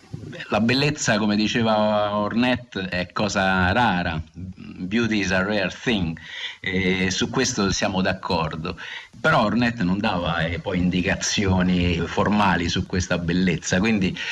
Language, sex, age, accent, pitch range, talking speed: Italian, male, 50-69, native, 85-105 Hz, 120 wpm